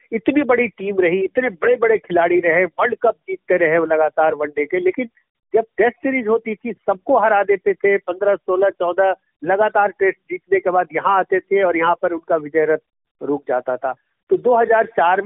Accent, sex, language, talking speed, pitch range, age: native, male, Hindi, 190 wpm, 170-230 Hz, 50-69